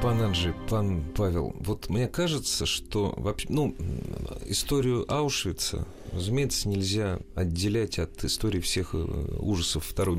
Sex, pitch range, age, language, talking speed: male, 85-115 Hz, 40-59, Russian, 110 wpm